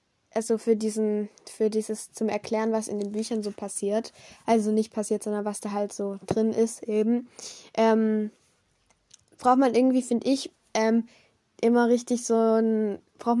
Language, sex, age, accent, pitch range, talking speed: German, female, 10-29, German, 215-235 Hz, 160 wpm